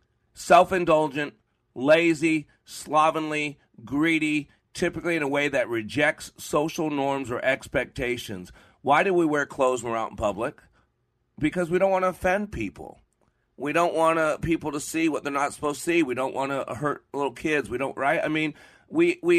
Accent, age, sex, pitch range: American, 40-59, male, 120-165 Hz